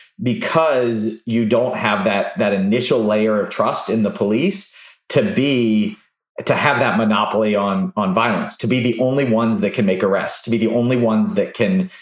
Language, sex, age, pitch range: English, male, 30-49, 105-130 Hz